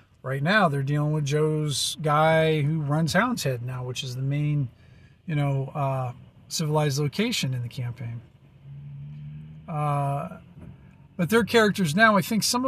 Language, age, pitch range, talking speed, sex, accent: English, 40-59, 135-170 Hz, 150 wpm, male, American